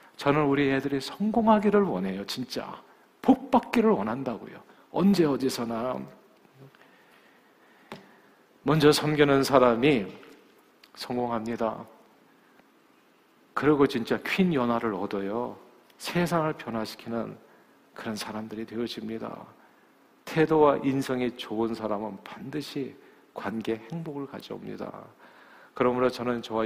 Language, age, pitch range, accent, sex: Korean, 40-59, 115-135 Hz, native, male